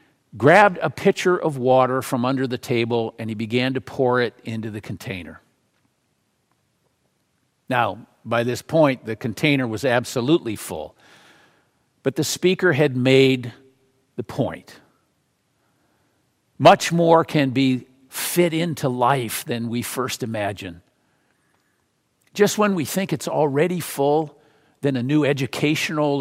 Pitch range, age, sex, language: 120-150 Hz, 50-69, male, English